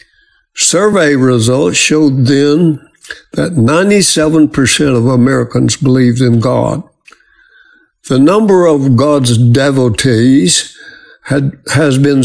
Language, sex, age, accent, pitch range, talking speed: English, male, 60-79, American, 125-160 Hz, 95 wpm